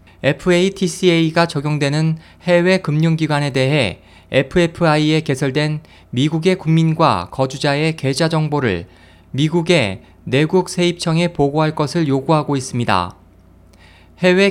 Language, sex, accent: Korean, male, native